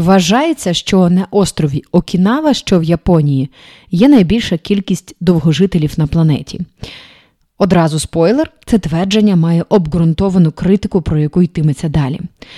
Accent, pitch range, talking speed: native, 160-220 Hz, 125 wpm